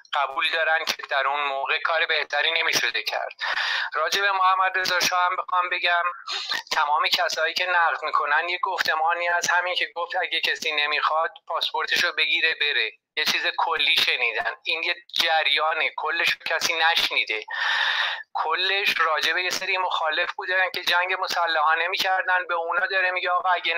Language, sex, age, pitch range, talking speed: Persian, male, 30-49, 165-190 Hz, 145 wpm